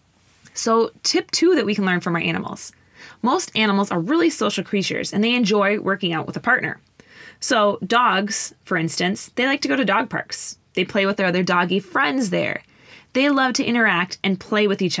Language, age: English, 20-39